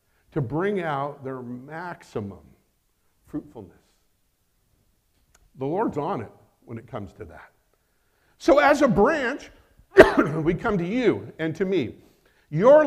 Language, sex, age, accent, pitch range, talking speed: English, male, 50-69, American, 135-225 Hz, 125 wpm